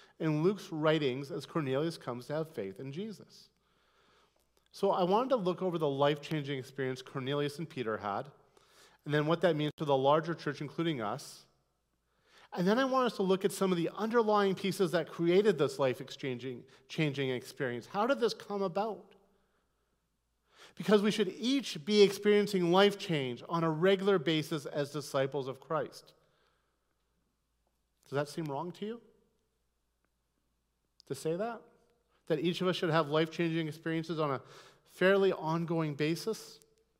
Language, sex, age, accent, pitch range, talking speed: English, male, 40-59, American, 130-190 Hz, 155 wpm